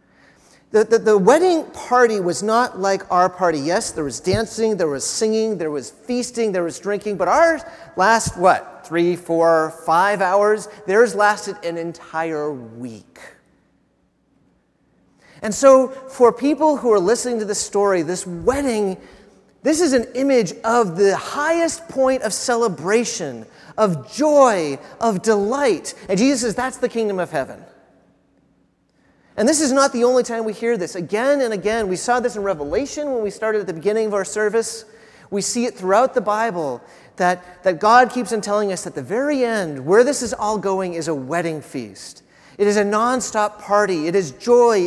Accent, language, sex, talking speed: American, English, male, 175 wpm